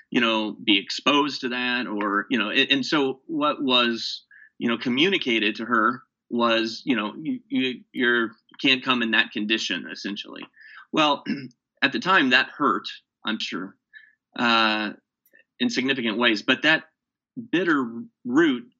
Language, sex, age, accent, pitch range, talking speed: English, male, 30-49, American, 110-145 Hz, 150 wpm